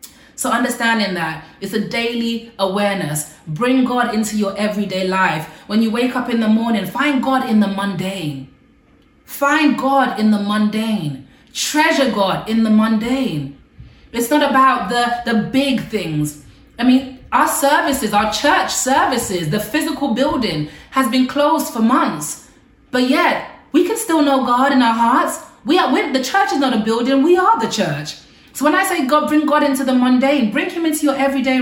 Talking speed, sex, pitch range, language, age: 175 wpm, female, 210-275 Hz, English, 30-49